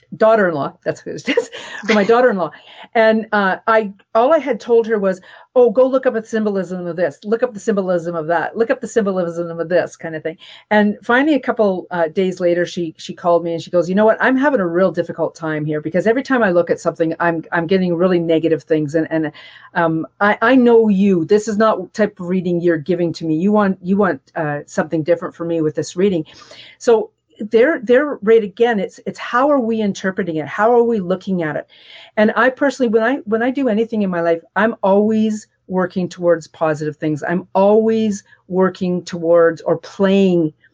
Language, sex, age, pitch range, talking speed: English, female, 50-69, 170-220 Hz, 215 wpm